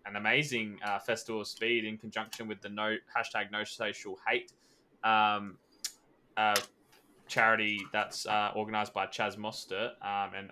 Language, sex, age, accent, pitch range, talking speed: English, male, 10-29, Australian, 105-120 Hz, 150 wpm